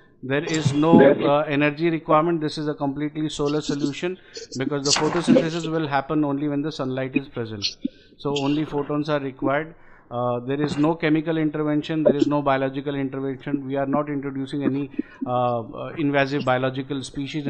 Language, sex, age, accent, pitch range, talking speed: Hindi, male, 50-69, native, 140-165 Hz, 170 wpm